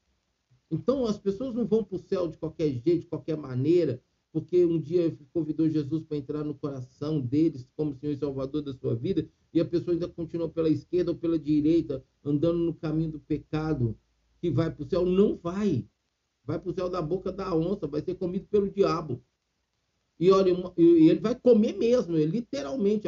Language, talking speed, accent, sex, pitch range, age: Portuguese, 185 wpm, Brazilian, male, 160-200 Hz, 50-69